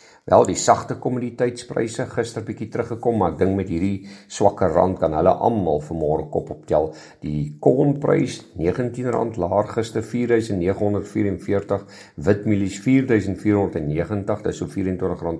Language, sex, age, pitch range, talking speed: English, male, 50-69, 90-110 Hz, 115 wpm